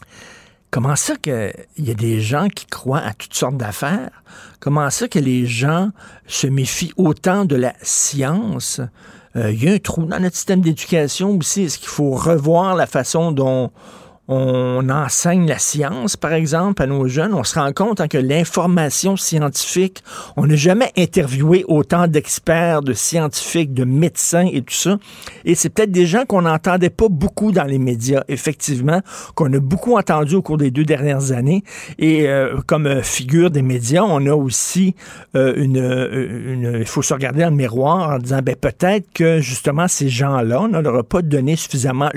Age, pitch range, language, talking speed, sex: 50-69, 135-175 Hz, French, 180 wpm, male